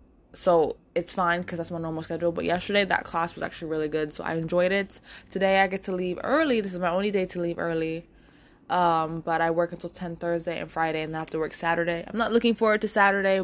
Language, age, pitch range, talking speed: English, 20-39, 165-195 Hz, 250 wpm